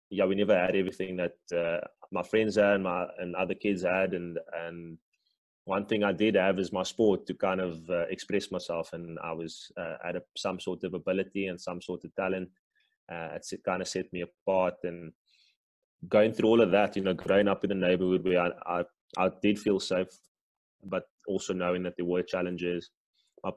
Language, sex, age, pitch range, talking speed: English, male, 20-39, 85-95 Hz, 210 wpm